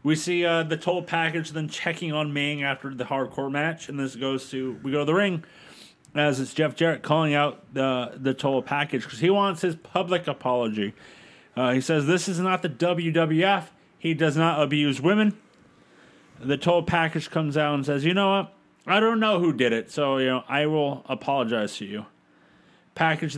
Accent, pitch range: American, 145-190 Hz